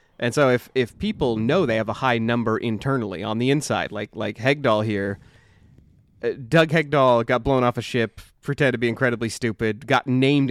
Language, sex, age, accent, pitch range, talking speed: English, male, 30-49, American, 105-125 Hz, 195 wpm